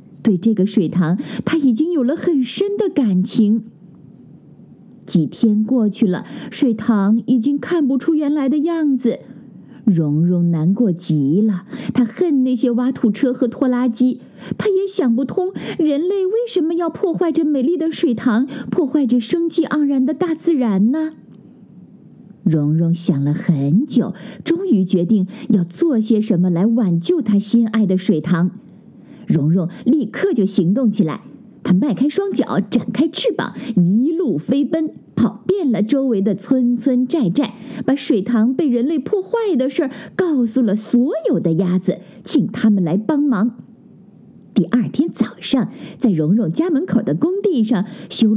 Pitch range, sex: 210-300 Hz, female